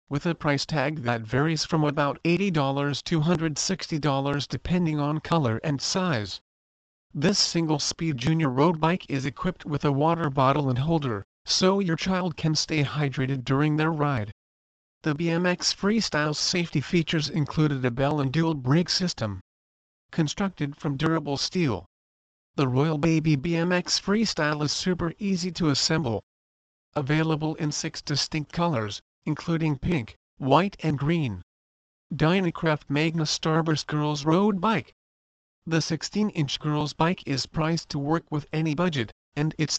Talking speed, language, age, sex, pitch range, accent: 140 wpm, English, 40-59, male, 140-165 Hz, American